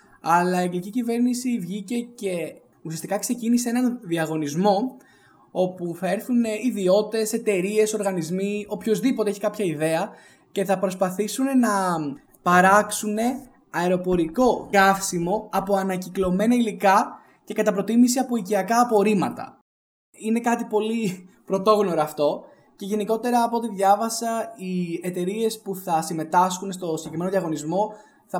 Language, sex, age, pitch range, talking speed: Greek, male, 20-39, 180-220 Hz, 115 wpm